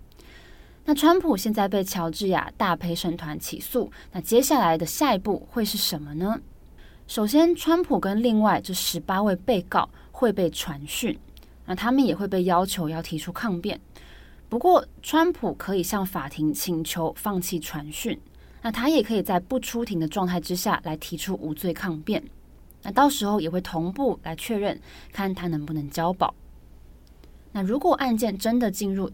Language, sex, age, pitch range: Chinese, female, 20-39, 165-220 Hz